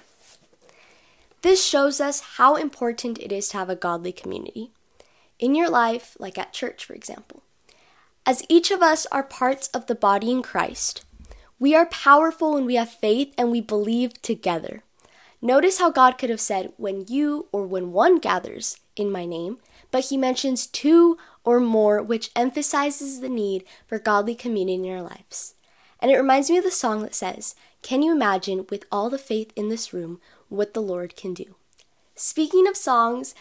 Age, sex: 10-29, female